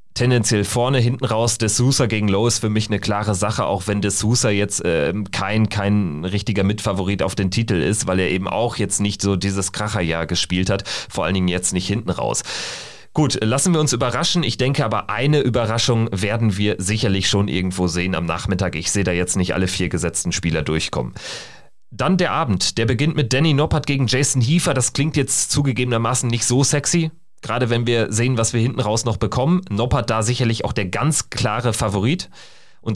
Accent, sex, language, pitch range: German, male, German, 105-135 Hz